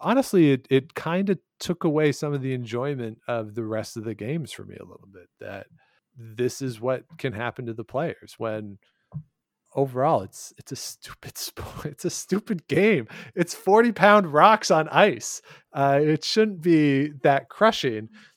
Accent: American